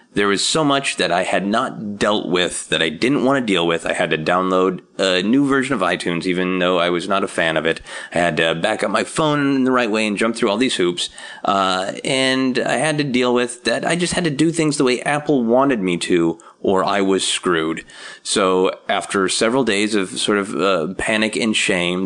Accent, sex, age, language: American, male, 30-49, English